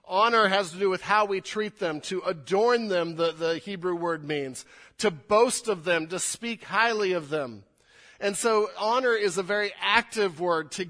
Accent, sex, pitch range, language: American, male, 145-205 Hz, English